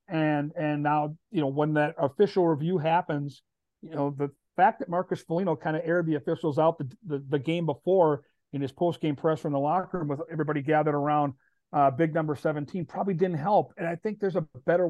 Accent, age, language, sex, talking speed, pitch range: American, 40-59, English, male, 215 wpm, 150-175 Hz